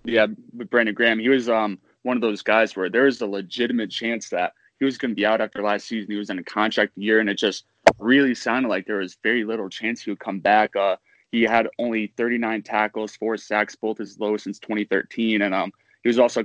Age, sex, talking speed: 20-39, male, 240 wpm